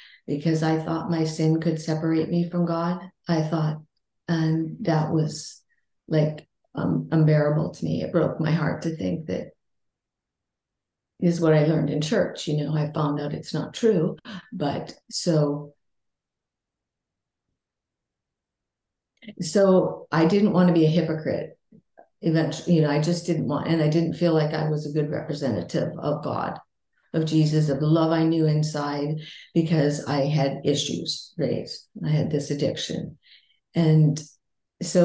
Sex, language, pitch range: female, English, 150-170 Hz